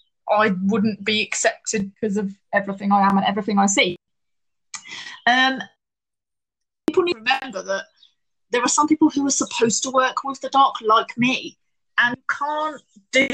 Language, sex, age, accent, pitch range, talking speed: English, female, 20-39, British, 210-300 Hz, 160 wpm